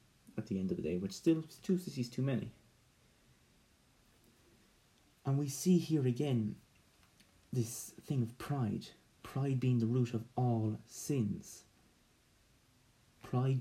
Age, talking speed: 30-49, 130 wpm